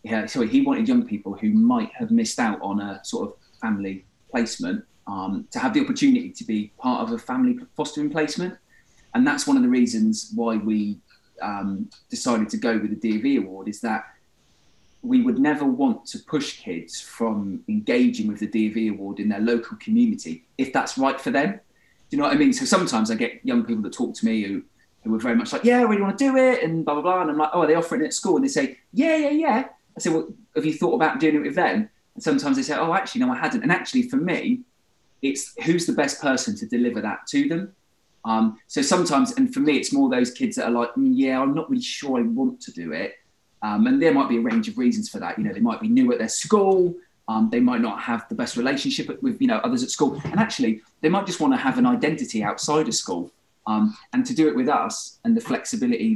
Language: English